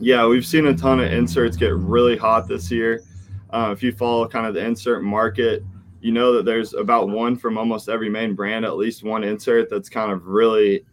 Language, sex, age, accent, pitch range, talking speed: English, male, 20-39, American, 100-115 Hz, 220 wpm